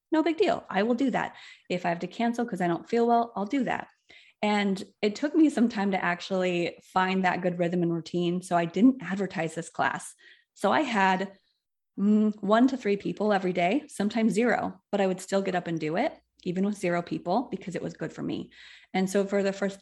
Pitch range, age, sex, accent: 180-235 Hz, 20-39, female, American